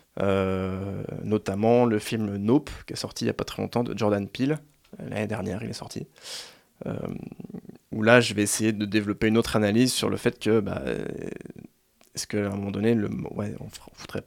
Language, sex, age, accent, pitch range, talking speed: French, male, 20-39, French, 105-120 Hz, 200 wpm